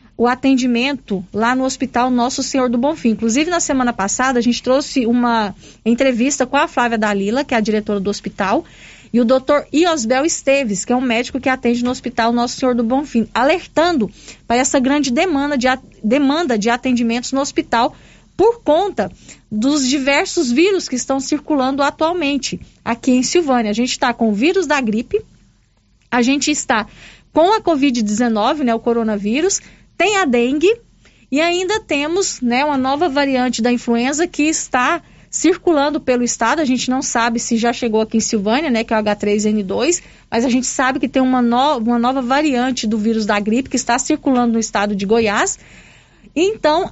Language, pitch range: Portuguese, 235-295 Hz